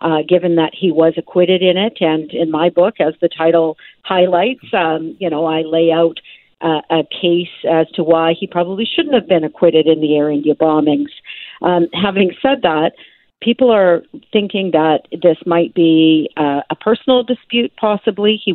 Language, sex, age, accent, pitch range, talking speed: English, female, 50-69, American, 160-190 Hz, 180 wpm